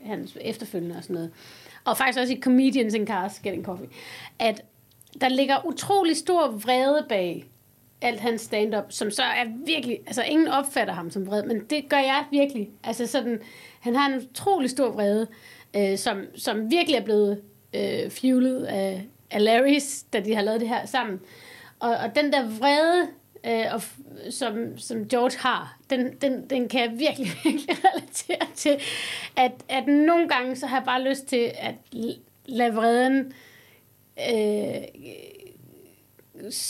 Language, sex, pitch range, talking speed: Danish, female, 225-285 Hz, 160 wpm